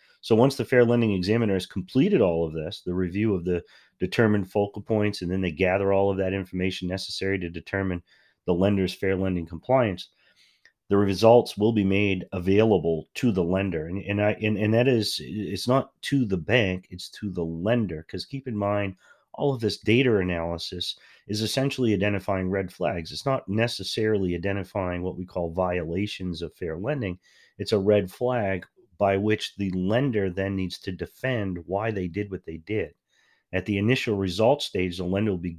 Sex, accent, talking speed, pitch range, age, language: male, American, 185 wpm, 90-110 Hz, 30-49, English